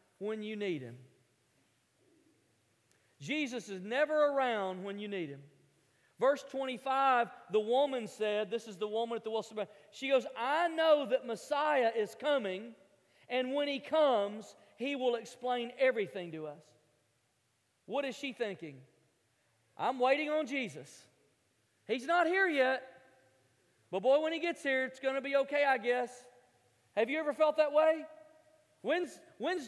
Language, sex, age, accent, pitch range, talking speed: English, male, 40-59, American, 215-320 Hz, 150 wpm